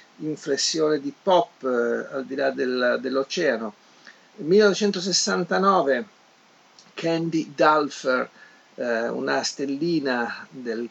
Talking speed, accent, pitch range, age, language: 85 wpm, native, 130-170 Hz, 50-69, Italian